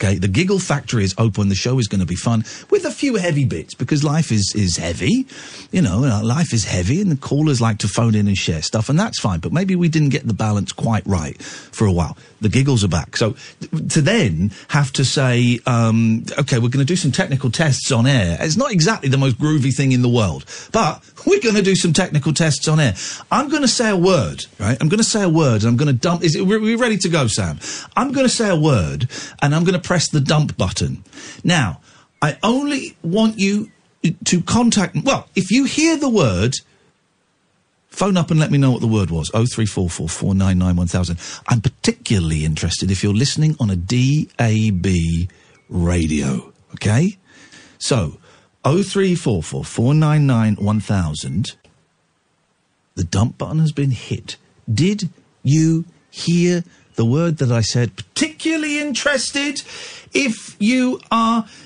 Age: 50-69